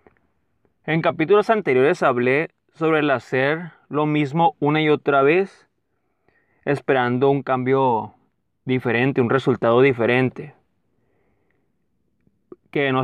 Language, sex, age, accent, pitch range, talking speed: Spanish, male, 20-39, Mexican, 125-160 Hz, 100 wpm